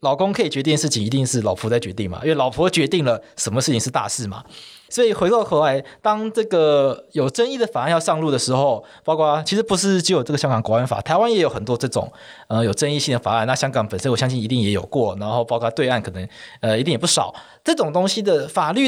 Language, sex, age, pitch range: Chinese, male, 20-39, 120-180 Hz